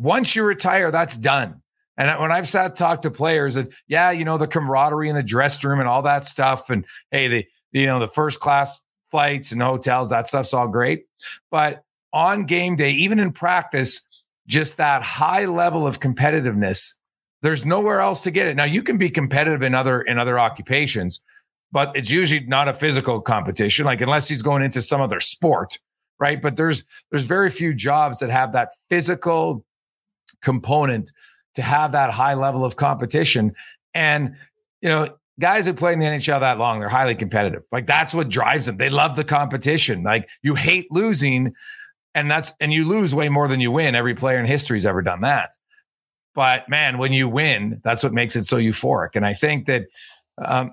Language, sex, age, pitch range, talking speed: English, male, 40-59, 130-165 Hz, 195 wpm